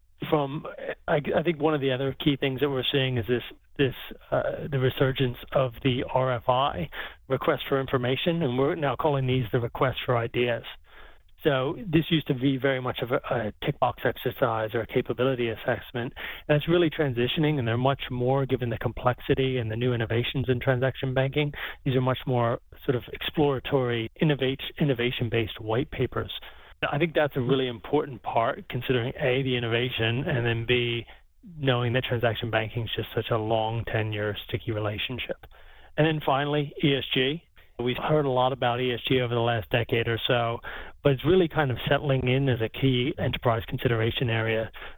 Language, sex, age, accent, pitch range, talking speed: English, male, 30-49, American, 120-140 Hz, 180 wpm